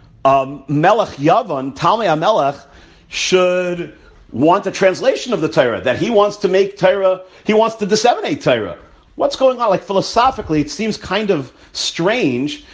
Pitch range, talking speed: 175-230 Hz, 155 wpm